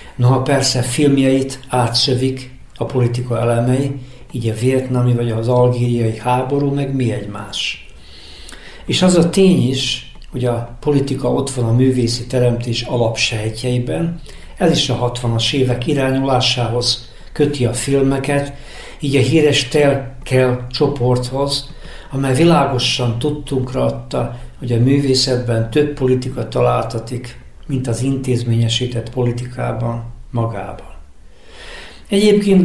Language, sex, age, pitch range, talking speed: Hungarian, male, 60-79, 120-135 Hz, 110 wpm